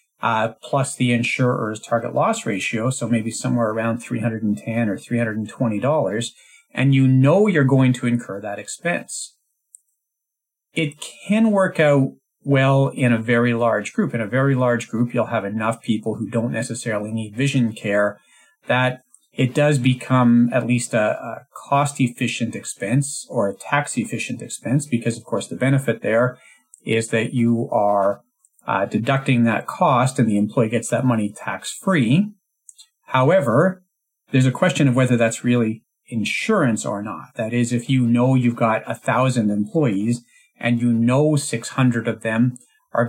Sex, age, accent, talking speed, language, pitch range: male, 40-59, American, 155 wpm, English, 115-135 Hz